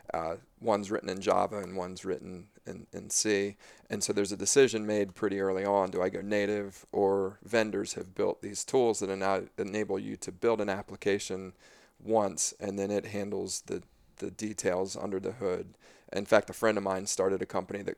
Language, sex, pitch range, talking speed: English, male, 95-110 Hz, 200 wpm